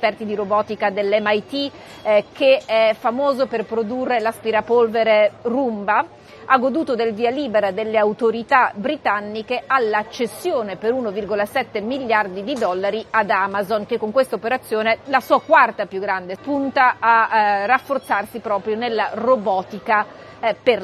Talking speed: 130 wpm